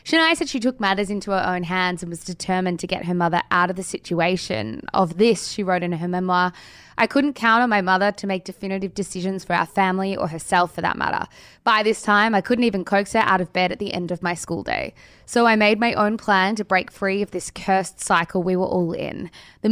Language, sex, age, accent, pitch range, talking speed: English, female, 20-39, Australian, 180-210 Hz, 245 wpm